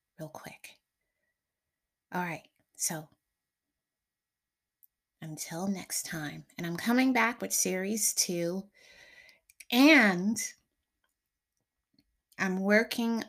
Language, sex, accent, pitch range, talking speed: English, female, American, 190-245 Hz, 80 wpm